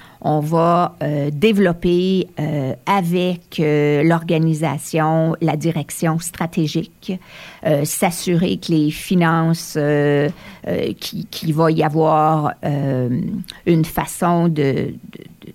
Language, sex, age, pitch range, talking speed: French, female, 50-69, 155-180 Hz, 110 wpm